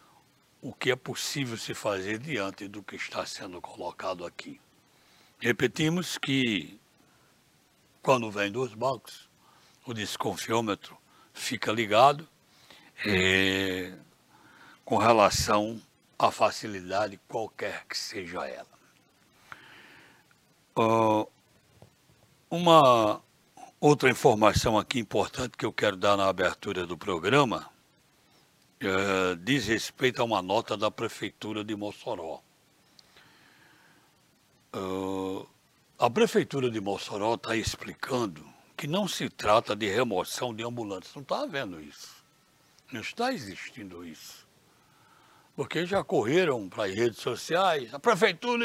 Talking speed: 105 wpm